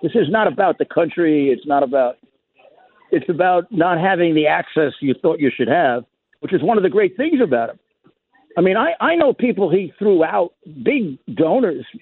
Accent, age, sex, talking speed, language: American, 60-79, male, 200 wpm, English